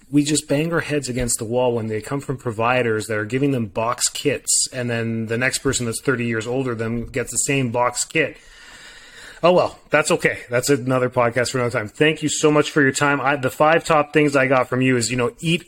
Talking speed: 240 wpm